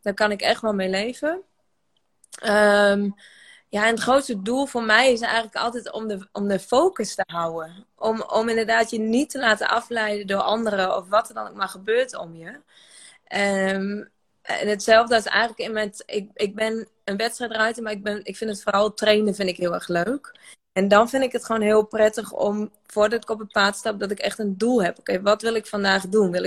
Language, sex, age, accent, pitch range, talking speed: Dutch, female, 20-39, Dutch, 195-225 Hz, 225 wpm